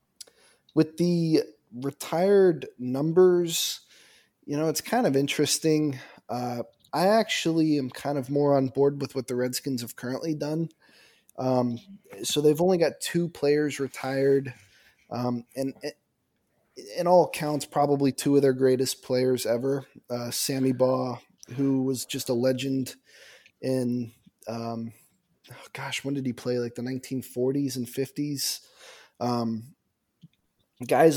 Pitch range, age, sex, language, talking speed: 120-140 Hz, 20-39, male, English, 135 wpm